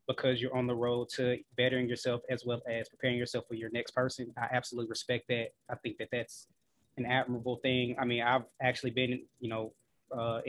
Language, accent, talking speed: English, American, 205 wpm